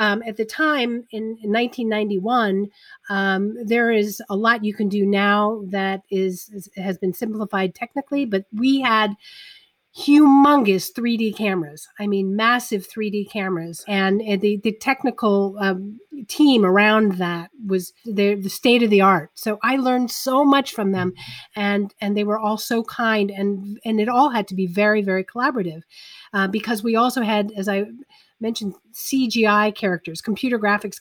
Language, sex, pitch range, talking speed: English, female, 195-235 Hz, 165 wpm